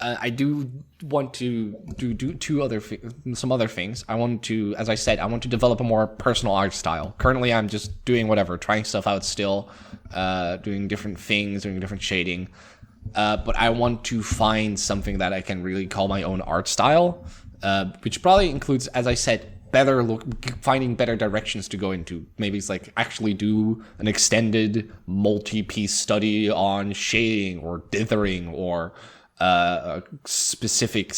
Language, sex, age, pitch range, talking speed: English, male, 20-39, 95-115 Hz, 175 wpm